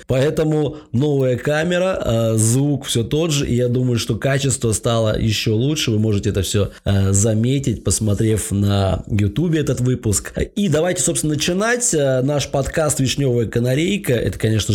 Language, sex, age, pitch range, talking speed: Russian, male, 20-39, 110-145 Hz, 140 wpm